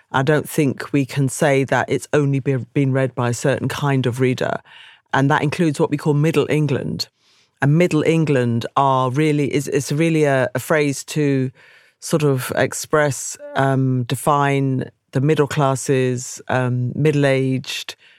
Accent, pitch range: British, 130-165 Hz